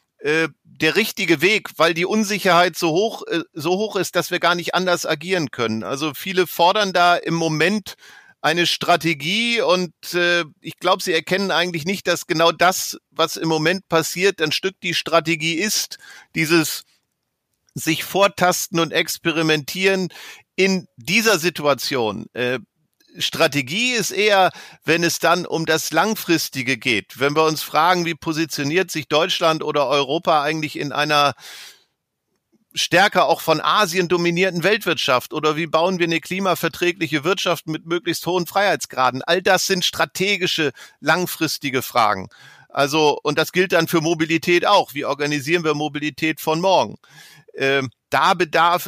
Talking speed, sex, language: 145 wpm, male, German